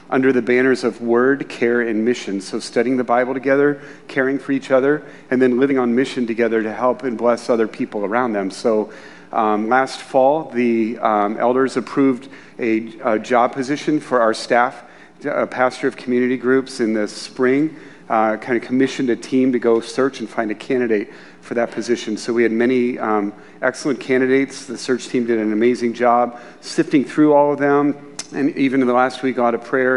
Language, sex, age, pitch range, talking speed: English, male, 40-59, 115-135 Hz, 195 wpm